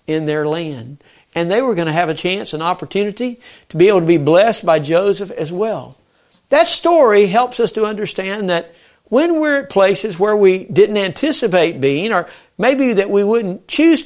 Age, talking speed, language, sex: 60-79, 190 wpm, English, male